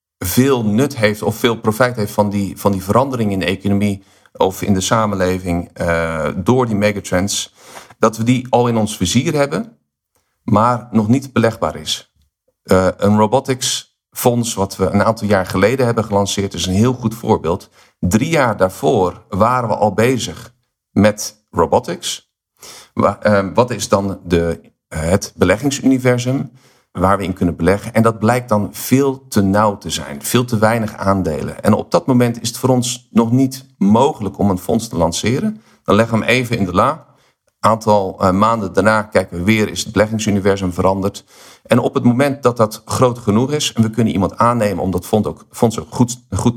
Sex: male